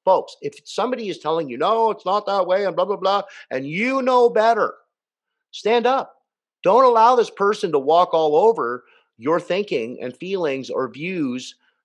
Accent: American